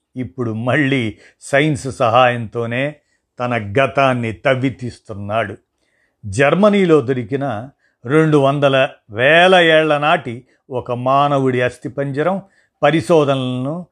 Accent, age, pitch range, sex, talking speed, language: native, 50-69, 125-150 Hz, male, 85 wpm, Telugu